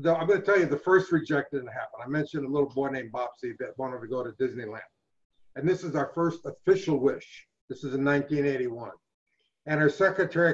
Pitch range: 135-165 Hz